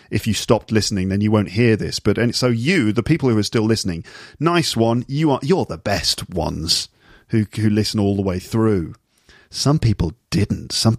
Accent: British